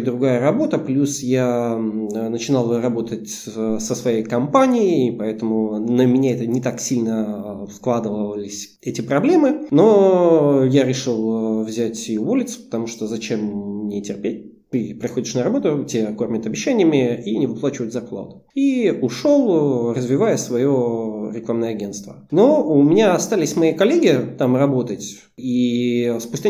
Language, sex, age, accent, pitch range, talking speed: Russian, male, 20-39, native, 110-140 Hz, 130 wpm